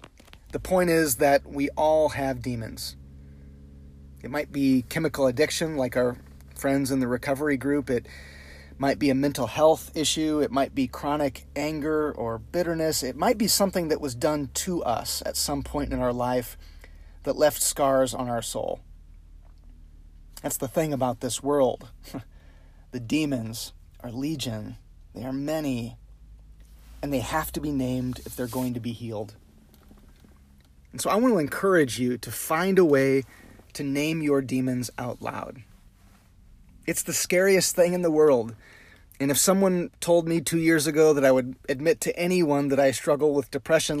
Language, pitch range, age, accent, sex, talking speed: English, 110-155 Hz, 30-49, American, male, 170 wpm